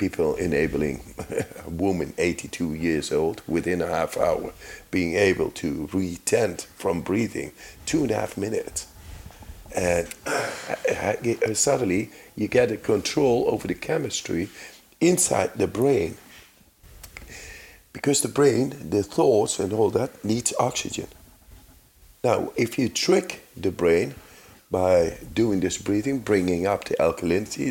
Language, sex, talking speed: English, male, 125 wpm